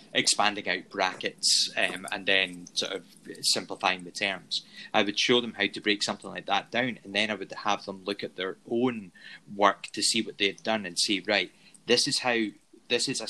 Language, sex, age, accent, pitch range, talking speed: English, male, 20-39, British, 100-115 Hz, 210 wpm